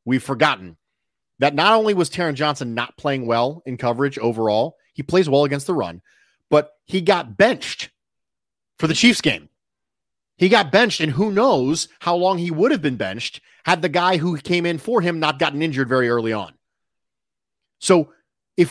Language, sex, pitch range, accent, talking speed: English, male, 140-200 Hz, American, 185 wpm